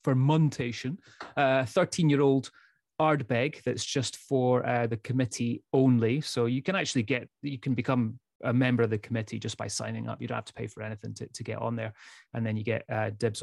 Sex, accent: male, British